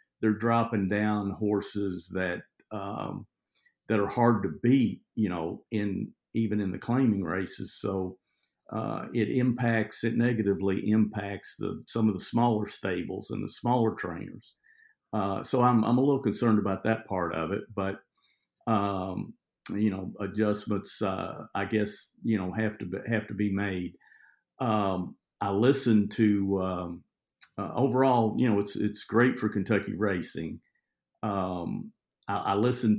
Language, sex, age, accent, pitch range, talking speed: English, male, 50-69, American, 95-110 Hz, 150 wpm